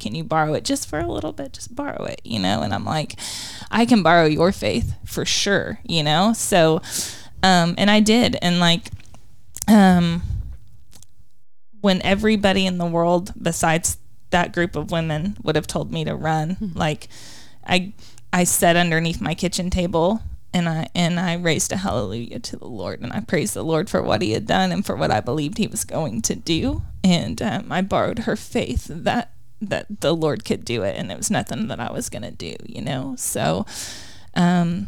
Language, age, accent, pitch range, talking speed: English, 20-39, American, 155-185 Hz, 195 wpm